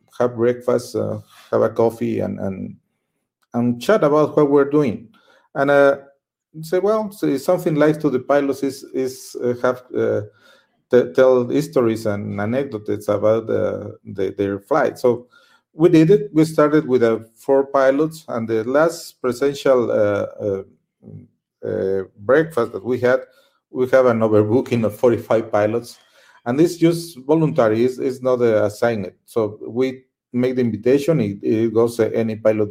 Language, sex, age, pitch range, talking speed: English, male, 50-69, 110-140 Hz, 165 wpm